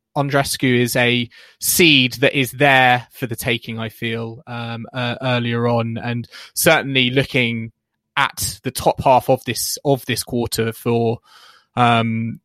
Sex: male